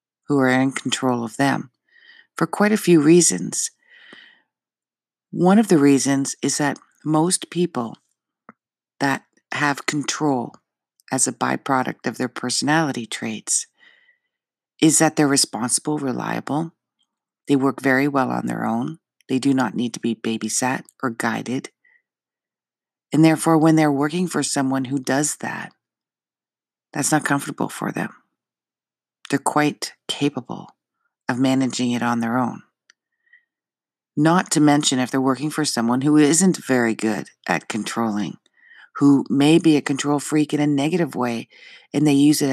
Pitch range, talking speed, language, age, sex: 130-165 Hz, 145 wpm, English, 50-69, female